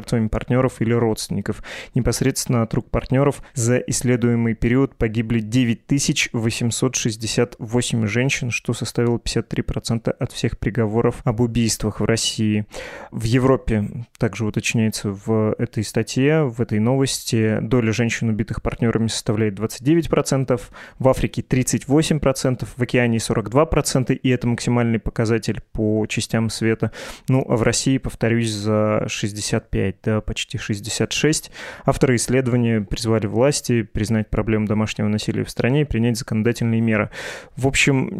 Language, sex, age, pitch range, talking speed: Russian, male, 20-39, 110-130 Hz, 125 wpm